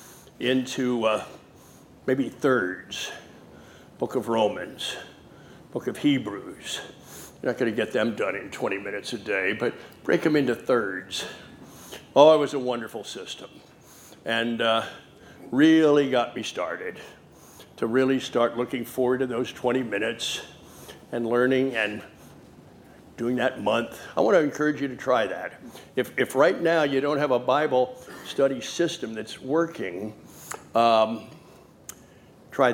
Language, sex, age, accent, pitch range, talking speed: English, male, 60-79, American, 115-145 Hz, 135 wpm